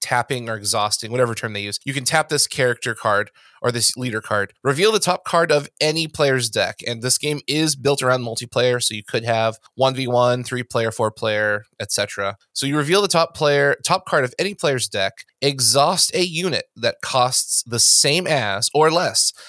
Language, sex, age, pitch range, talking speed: English, male, 20-39, 115-145 Hz, 205 wpm